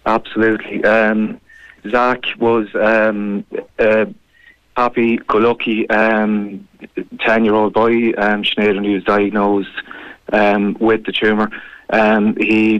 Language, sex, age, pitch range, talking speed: English, male, 30-49, 105-110 Hz, 110 wpm